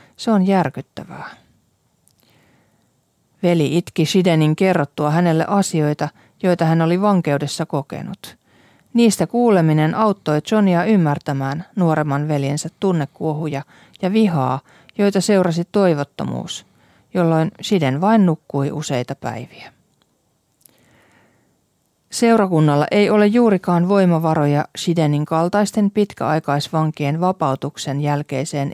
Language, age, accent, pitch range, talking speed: Finnish, 40-59, native, 150-195 Hz, 90 wpm